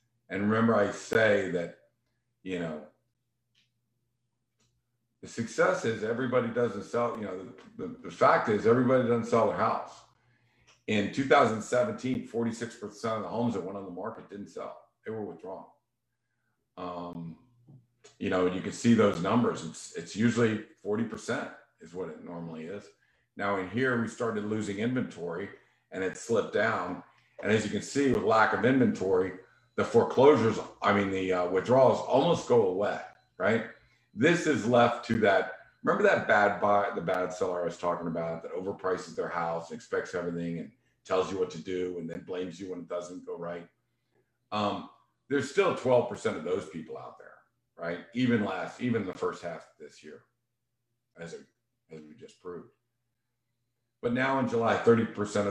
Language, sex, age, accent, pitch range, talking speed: English, male, 50-69, American, 95-120 Hz, 170 wpm